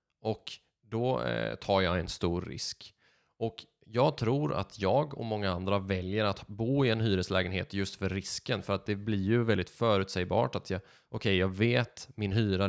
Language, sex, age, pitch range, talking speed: Swedish, male, 20-39, 95-120 Hz, 185 wpm